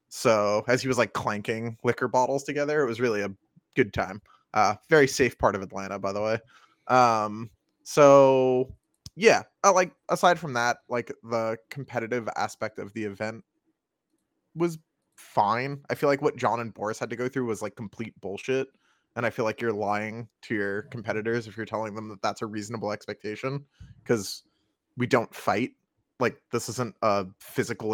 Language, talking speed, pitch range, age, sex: English, 180 wpm, 105-125 Hz, 20-39, male